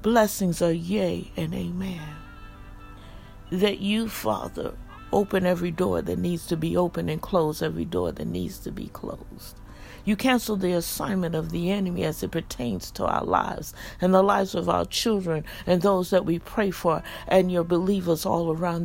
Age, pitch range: 60-79, 165-220 Hz